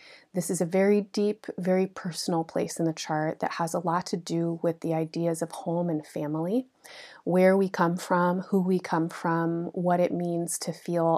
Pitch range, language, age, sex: 165-195 Hz, English, 30-49, female